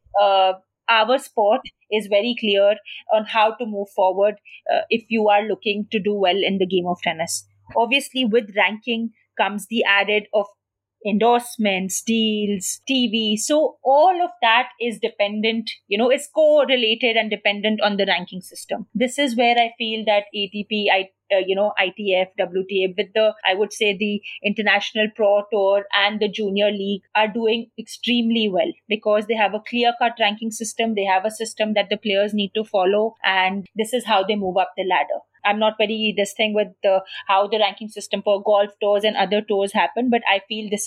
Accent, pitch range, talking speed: Indian, 200-230 Hz, 185 wpm